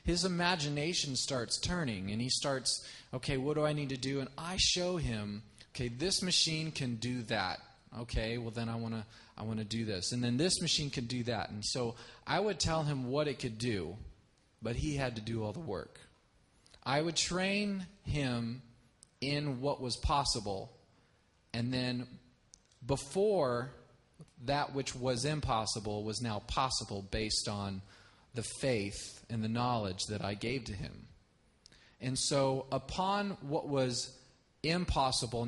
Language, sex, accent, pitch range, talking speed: English, male, American, 110-145 Hz, 160 wpm